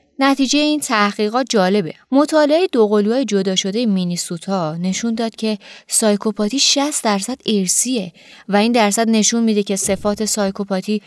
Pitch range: 190-240 Hz